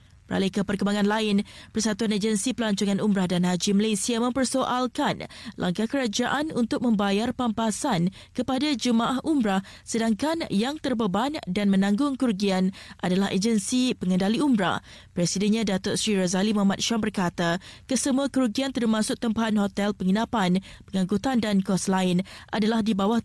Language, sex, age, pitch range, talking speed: Malay, female, 20-39, 195-245 Hz, 125 wpm